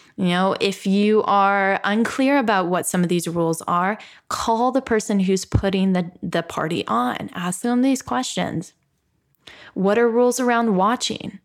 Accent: American